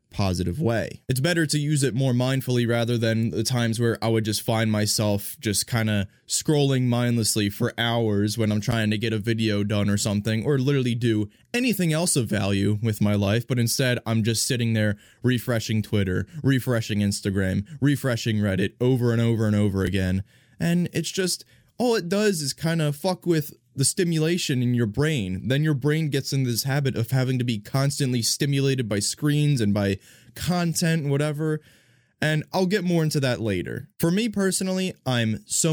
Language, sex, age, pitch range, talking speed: English, male, 20-39, 110-150 Hz, 185 wpm